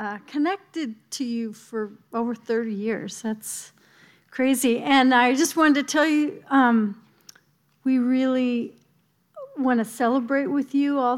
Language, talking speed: English, 140 wpm